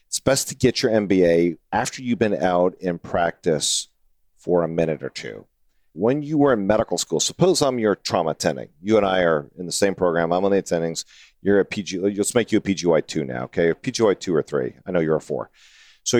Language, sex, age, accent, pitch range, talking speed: English, male, 40-59, American, 90-135 Hz, 230 wpm